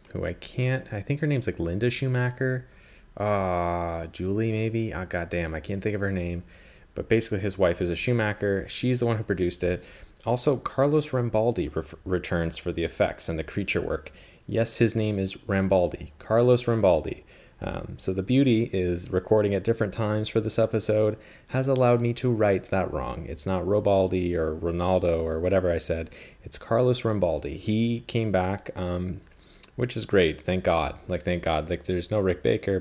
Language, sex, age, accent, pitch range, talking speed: English, male, 30-49, American, 85-110 Hz, 190 wpm